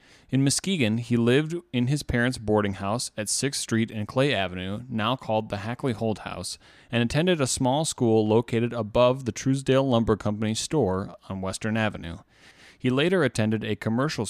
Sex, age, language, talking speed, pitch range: male, 30-49, English, 170 wpm, 105-130 Hz